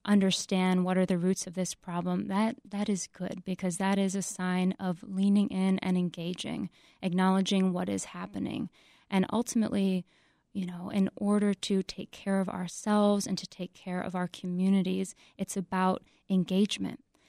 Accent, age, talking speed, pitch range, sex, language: American, 20-39, 165 wpm, 180-200 Hz, female, English